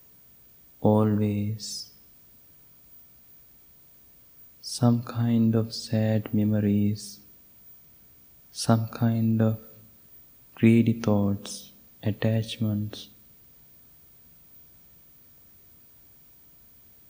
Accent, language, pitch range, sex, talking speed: Indian, English, 105-115 Hz, male, 40 wpm